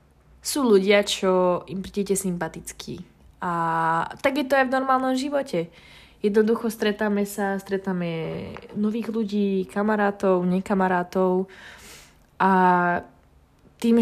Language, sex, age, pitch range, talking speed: Slovak, female, 20-39, 180-220 Hz, 95 wpm